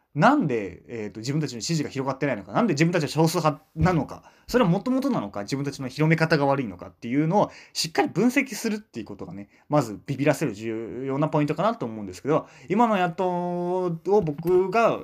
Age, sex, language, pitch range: 20-39, male, Japanese, 105-180 Hz